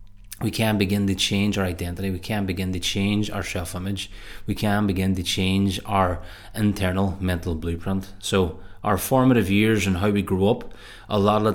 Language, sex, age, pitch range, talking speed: English, male, 20-39, 95-115 Hz, 185 wpm